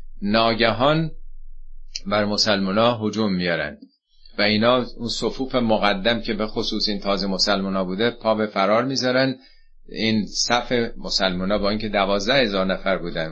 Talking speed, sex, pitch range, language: 135 wpm, male, 95-130 Hz, Persian